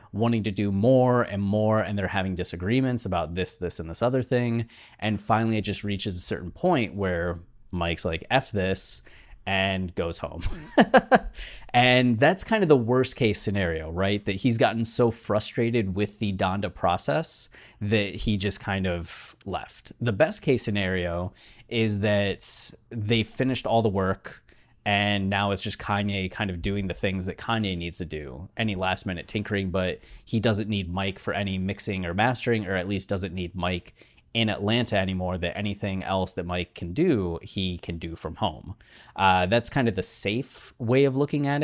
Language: English